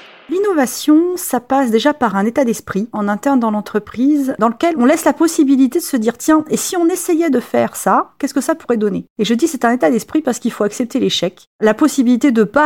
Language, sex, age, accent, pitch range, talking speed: French, female, 40-59, French, 215-270 Hz, 240 wpm